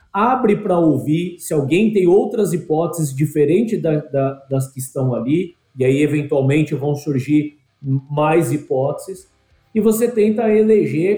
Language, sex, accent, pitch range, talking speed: Portuguese, male, Brazilian, 150-195 Hz, 130 wpm